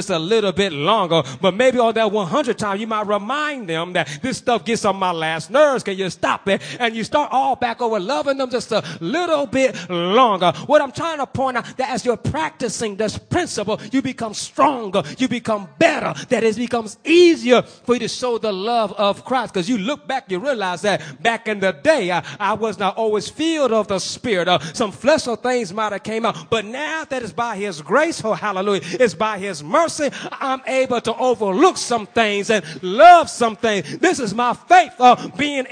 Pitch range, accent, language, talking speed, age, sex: 170-245 Hz, American, English, 215 wpm, 30-49, male